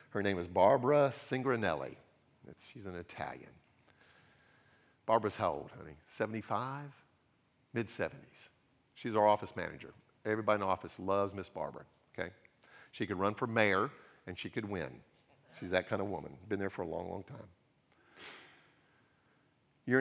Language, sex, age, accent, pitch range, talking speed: English, male, 50-69, American, 95-115 Hz, 145 wpm